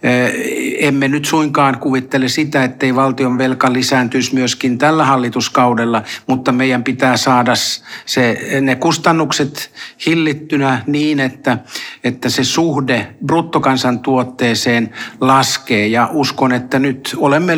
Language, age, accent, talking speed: Finnish, 60-79, native, 105 wpm